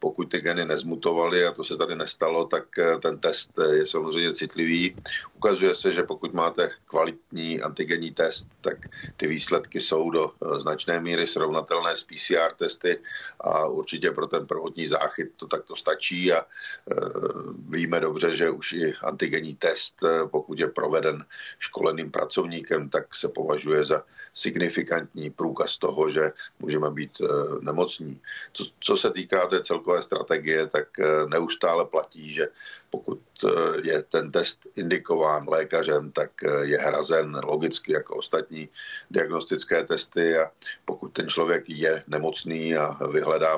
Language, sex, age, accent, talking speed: Czech, male, 50-69, native, 140 wpm